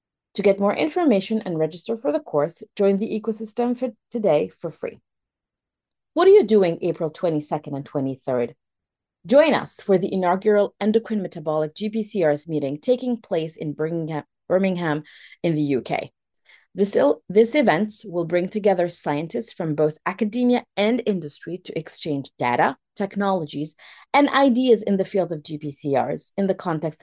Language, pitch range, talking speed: English, 155-220 Hz, 145 wpm